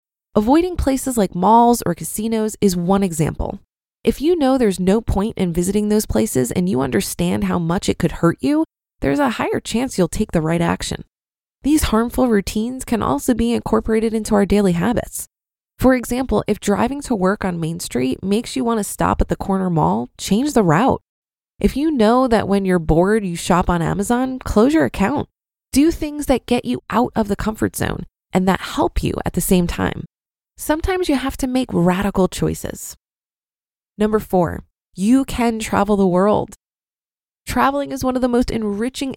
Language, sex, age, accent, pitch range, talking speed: English, female, 20-39, American, 190-245 Hz, 185 wpm